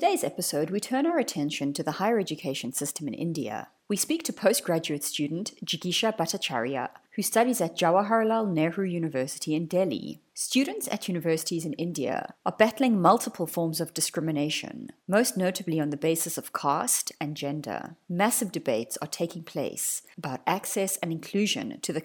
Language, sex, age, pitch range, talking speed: English, female, 30-49, 150-220 Hz, 165 wpm